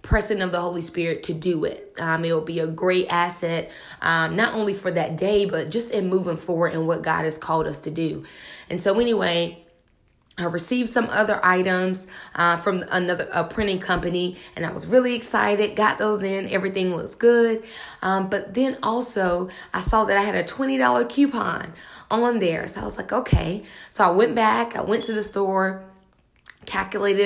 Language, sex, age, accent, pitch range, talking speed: English, female, 20-39, American, 170-205 Hz, 195 wpm